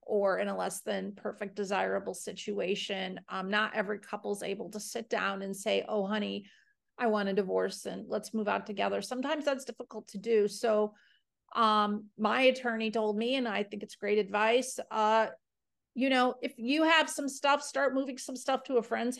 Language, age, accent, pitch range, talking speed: English, 40-59, American, 200-235 Hz, 190 wpm